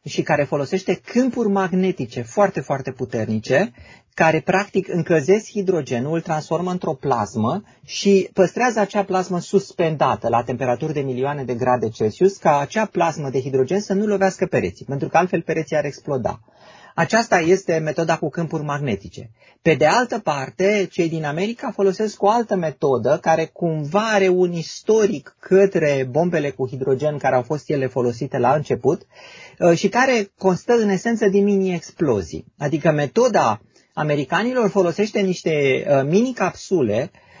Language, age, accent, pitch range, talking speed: Romanian, 30-49, native, 145-195 Hz, 140 wpm